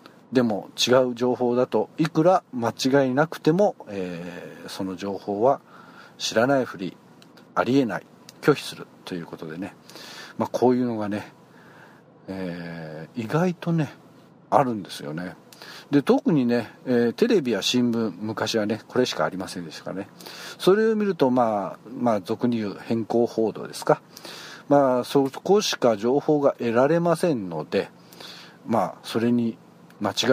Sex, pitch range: male, 110-160 Hz